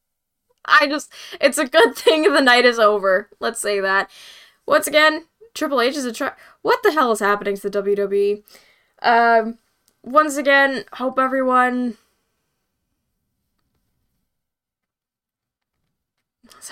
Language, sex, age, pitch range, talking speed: English, female, 10-29, 210-285 Hz, 120 wpm